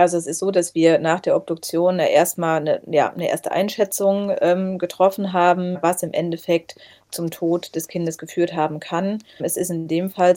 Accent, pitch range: German, 165-180 Hz